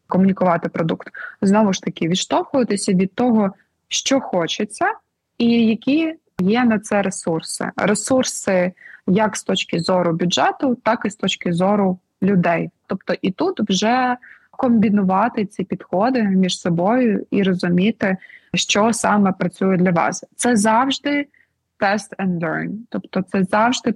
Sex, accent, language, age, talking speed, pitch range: female, native, Ukrainian, 20-39, 130 wpm, 185-225 Hz